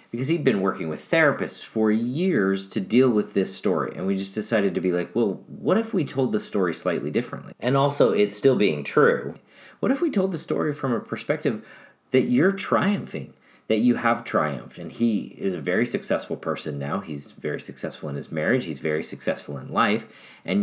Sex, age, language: male, 40-59, English